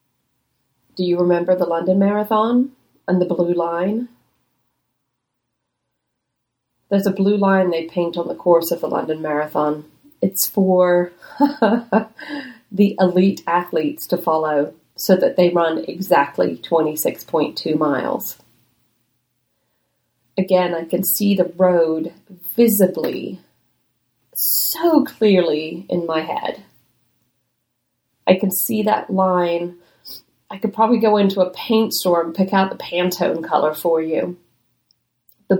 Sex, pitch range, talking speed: female, 170-205 Hz, 120 wpm